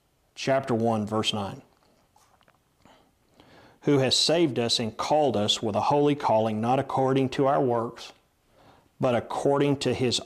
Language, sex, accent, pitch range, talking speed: English, male, American, 120-140 Hz, 140 wpm